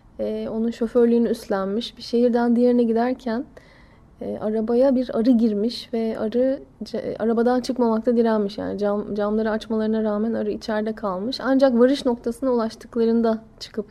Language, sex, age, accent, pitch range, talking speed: Turkish, female, 10-29, native, 225-275 Hz, 140 wpm